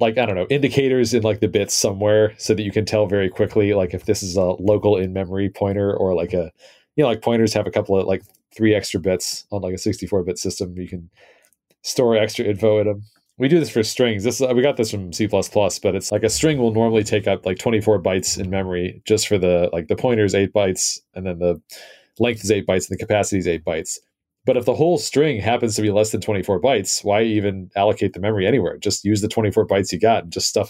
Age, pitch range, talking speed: 30-49, 95-110 Hz, 245 wpm